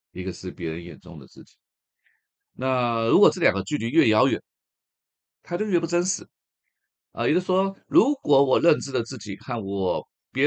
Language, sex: Chinese, male